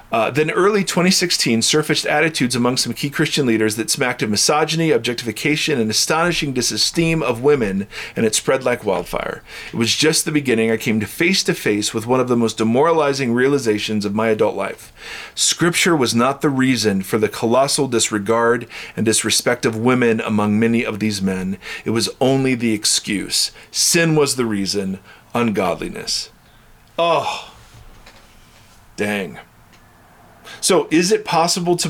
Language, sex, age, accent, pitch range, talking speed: English, male, 40-59, American, 110-145 Hz, 155 wpm